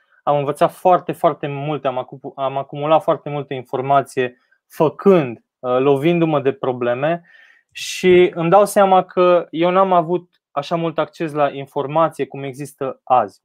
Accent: native